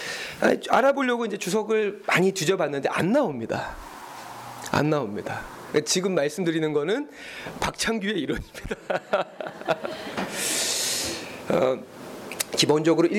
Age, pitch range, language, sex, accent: 40-59, 150-235 Hz, Korean, male, native